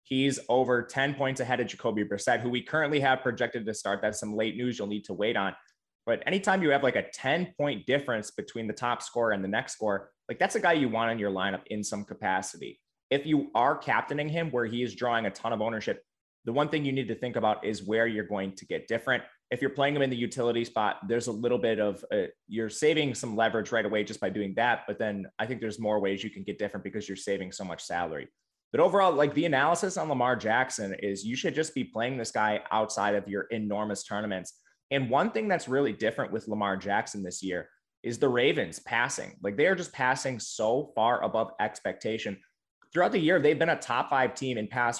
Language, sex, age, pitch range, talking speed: English, male, 20-39, 105-130 Hz, 235 wpm